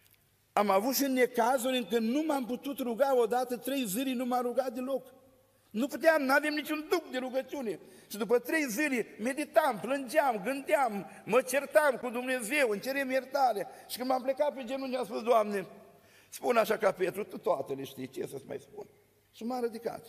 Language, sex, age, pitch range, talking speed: Romanian, male, 50-69, 170-255 Hz, 190 wpm